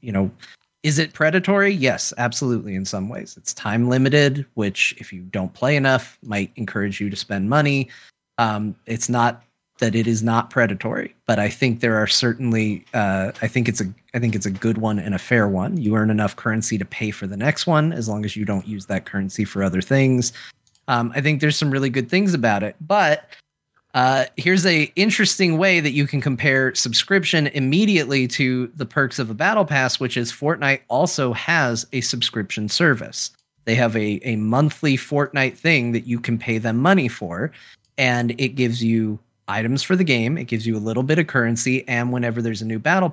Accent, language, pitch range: American, English, 110-140 Hz